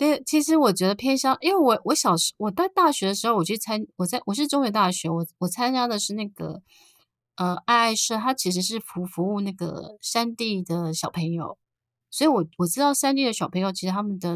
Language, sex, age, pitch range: Chinese, female, 30-49, 175-230 Hz